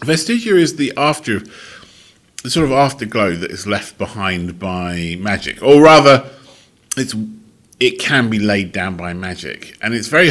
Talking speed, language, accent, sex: 155 wpm, English, British, male